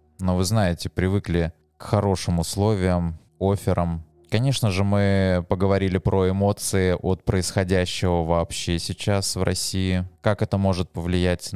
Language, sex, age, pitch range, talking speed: Russian, male, 20-39, 85-110 Hz, 125 wpm